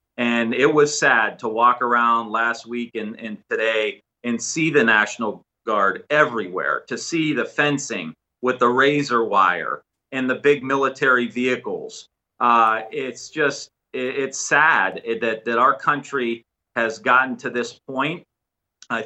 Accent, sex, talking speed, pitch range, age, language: American, male, 150 wpm, 120-145 Hz, 40-59, English